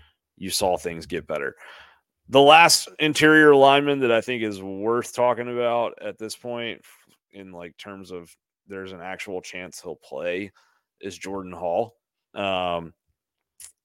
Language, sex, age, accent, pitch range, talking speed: English, male, 30-49, American, 85-115 Hz, 145 wpm